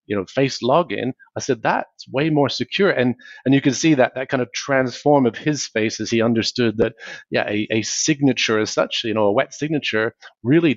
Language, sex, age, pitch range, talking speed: English, male, 30-49, 110-130 Hz, 215 wpm